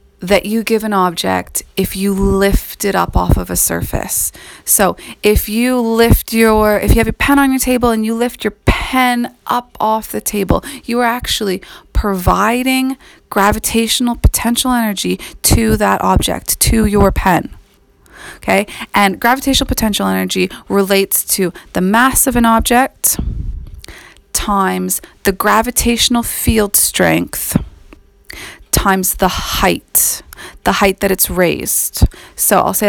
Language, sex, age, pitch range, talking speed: English, female, 30-49, 180-235 Hz, 140 wpm